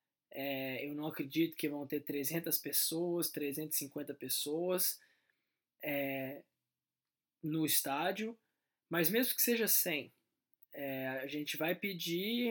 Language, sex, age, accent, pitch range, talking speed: Portuguese, male, 20-39, Brazilian, 150-185 Hz, 115 wpm